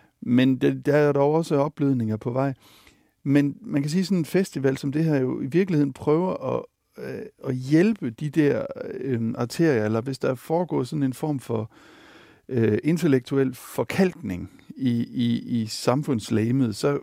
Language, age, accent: Danish, 60-79, native